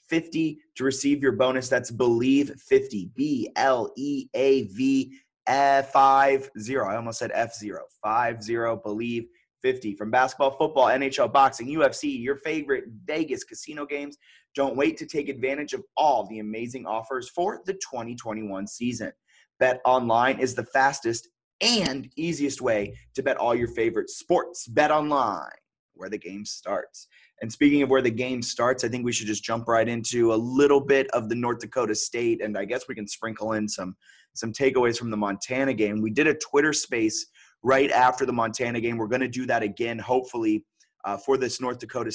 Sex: male